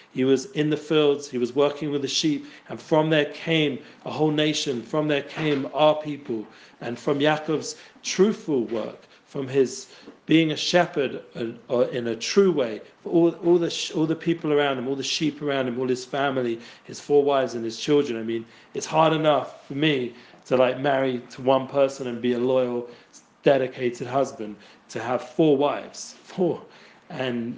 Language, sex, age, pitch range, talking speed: English, male, 40-59, 125-150 Hz, 185 wpm